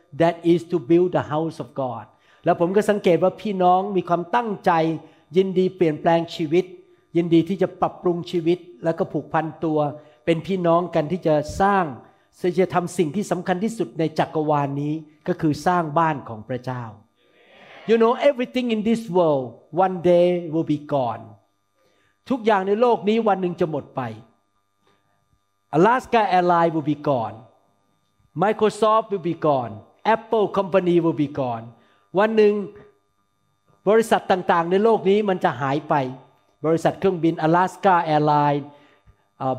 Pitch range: 150-190 Hz